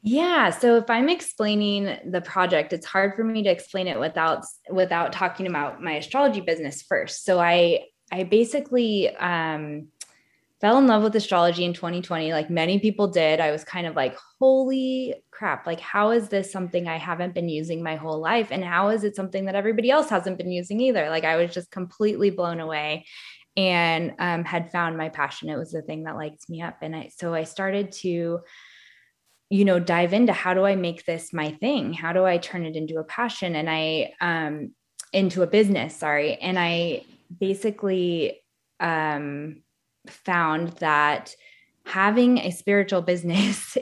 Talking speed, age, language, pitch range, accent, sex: 180 wpm, 20-39, English, 165-215 Hz, American, female